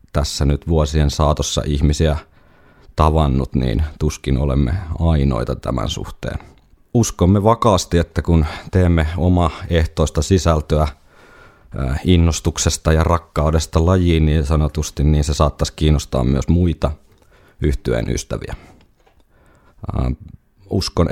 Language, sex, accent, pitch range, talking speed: Finnish, male, native, 70-85 Hz, 95 wpm